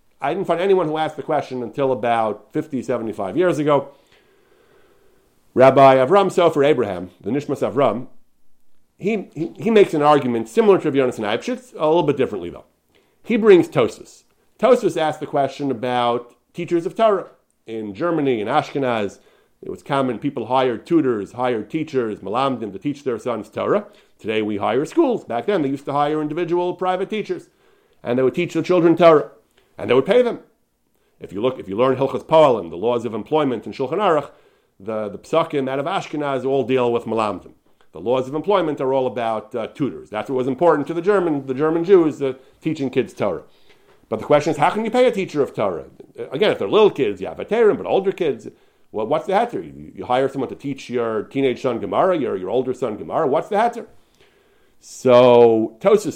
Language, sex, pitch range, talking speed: English, male, 125-175 Hz, 200 wpm